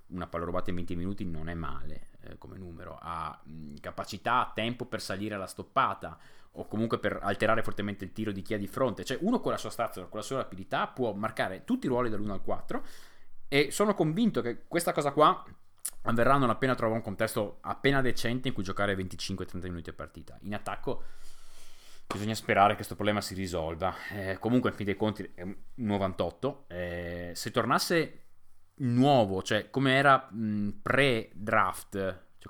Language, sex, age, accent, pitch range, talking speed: Italian, male, 20-39, native, 95-120 Hz, 185 wpm